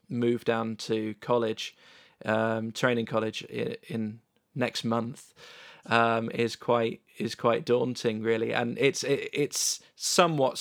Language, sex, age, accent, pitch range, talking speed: English, male, 20-39, British, 110-120 Hz, 125 wpm